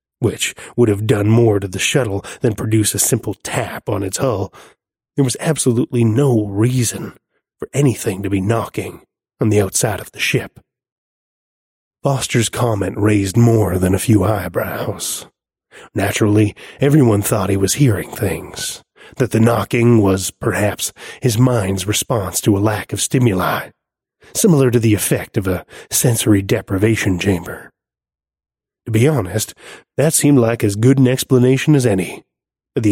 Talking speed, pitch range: 150 wpm, 100-125 Hz